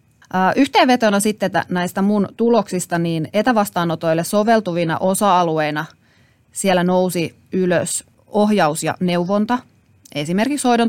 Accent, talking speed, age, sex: native, 95 wpm, 30-49, female